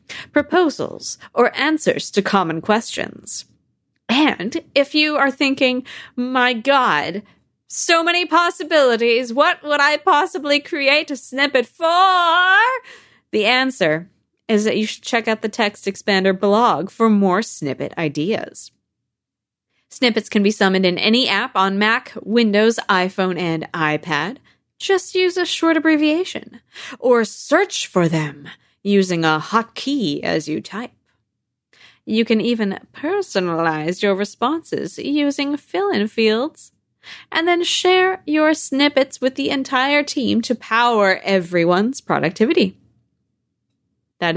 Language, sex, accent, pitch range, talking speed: English, female, American, 200-295 Hz, 125 wpm